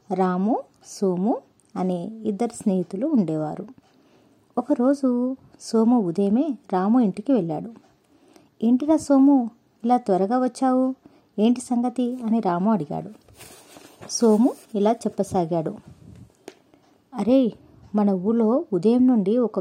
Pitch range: 195-250 Hz